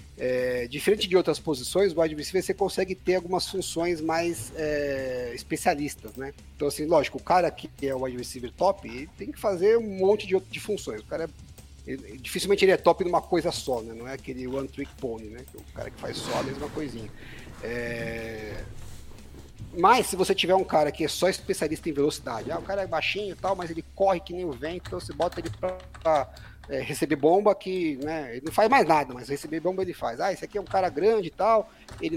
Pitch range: 135-190 Hz